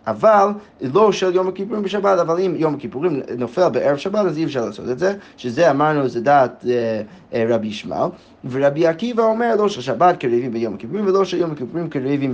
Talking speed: 200 wpm